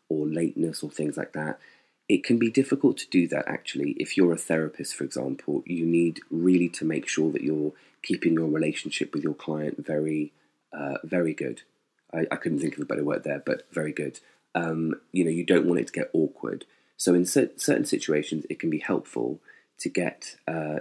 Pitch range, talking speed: 75-85 Hz, 205 wpm